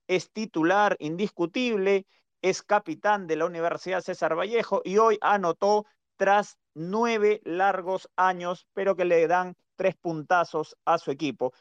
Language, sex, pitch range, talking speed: Spanish, male, 160-205 Hz, 135 wpm